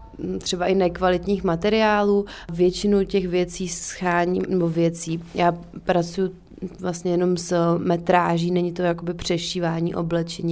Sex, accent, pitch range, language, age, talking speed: female, native, 170-190 Hz, Czech, 30-49, 125 wpm